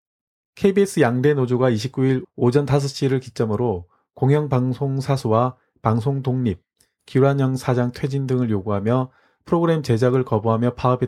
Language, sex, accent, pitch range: Korean, male, native, 115-145 Hz